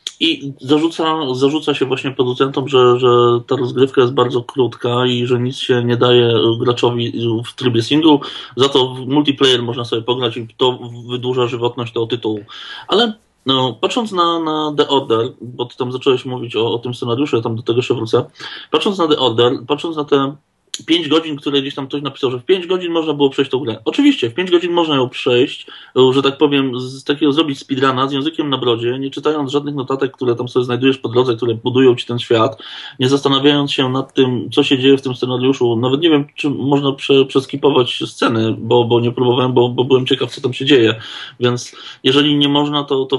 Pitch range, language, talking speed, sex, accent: 120-140 Hz, Polish, 210 wpm, male, native